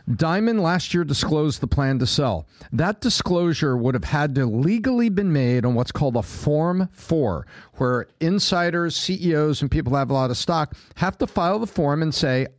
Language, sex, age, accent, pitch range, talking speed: English, male, 50-69, American, 135-195 Hz, 195 wpm